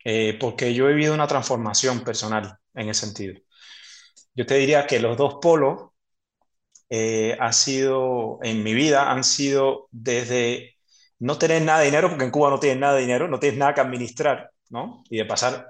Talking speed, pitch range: 185 wpm, 115-140 Hz